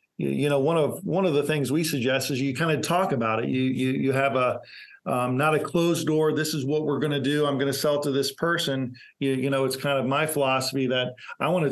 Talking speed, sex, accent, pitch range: 275 wpm, male, American, 135-155 Hz